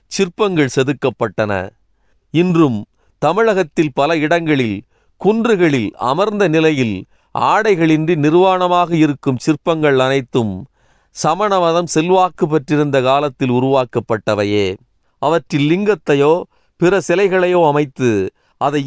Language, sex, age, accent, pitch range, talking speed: Tamil, male, 40-59, native, 130-175 Hz, 80 wpm